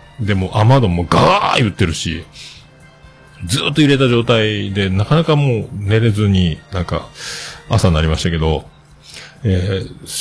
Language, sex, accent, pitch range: Japanese, male, native, 90-135 Hz